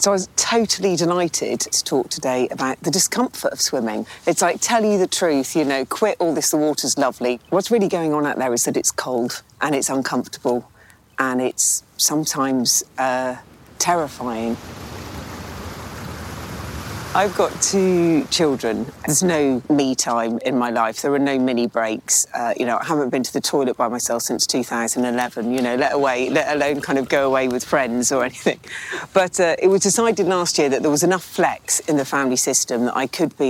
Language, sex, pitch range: English, female, 125-165 Hz